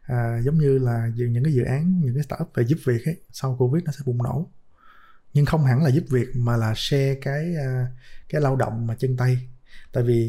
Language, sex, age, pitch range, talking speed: Vietnamese, male, 20-39, 120-140 Hz, 225 wpm